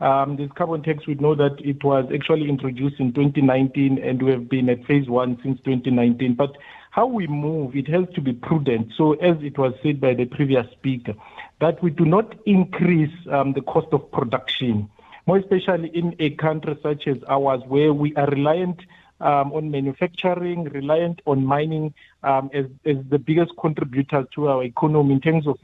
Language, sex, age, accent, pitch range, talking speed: English, male, 50-69, South African, 135-170 Hz, 185 wpm